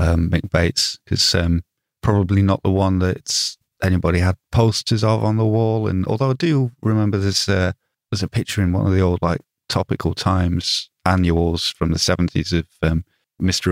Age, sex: 30-49, male